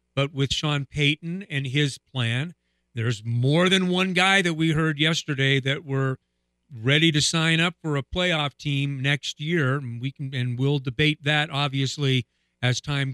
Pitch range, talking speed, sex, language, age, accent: 125-170 Hz, 175 wpm, male, English, 50-69, American